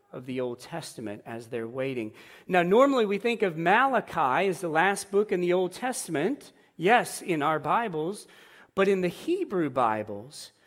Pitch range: 130-210 Hz